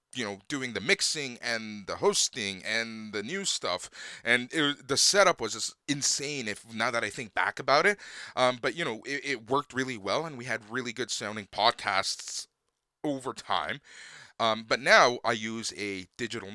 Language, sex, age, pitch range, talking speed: English, male, 20-39, 110-140 Hz, 190 wpm